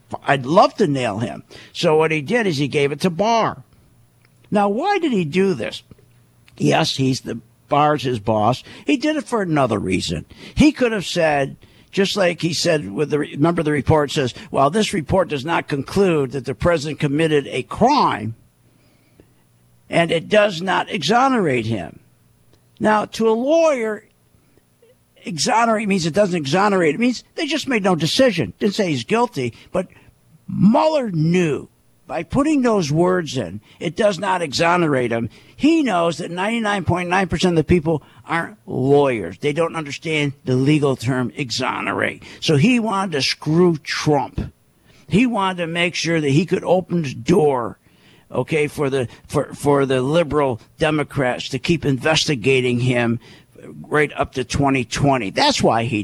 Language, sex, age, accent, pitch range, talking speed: English, male, 50-69, American, 130-195 Hz, 160 wpm